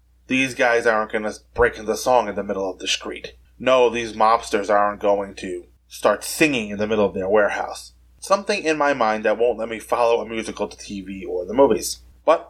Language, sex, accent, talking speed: English, male, American, 220 wpm